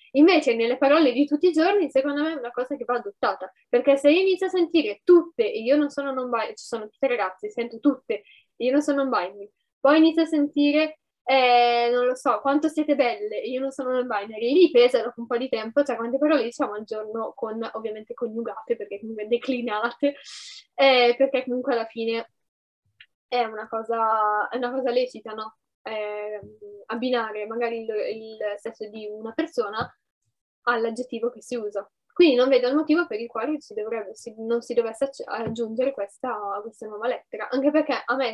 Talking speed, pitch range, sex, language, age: 190 wpm, 225-295 Hz, female, Italian, 10-29